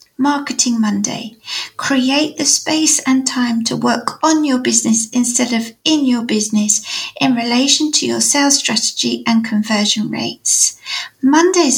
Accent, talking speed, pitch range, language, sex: British, 140 wpm, 225-300 Hz, English, female